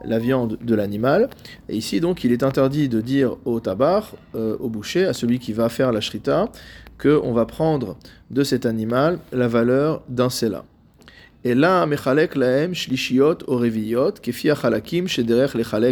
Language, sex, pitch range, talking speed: French, male, 110-140 Hz, 140 wpm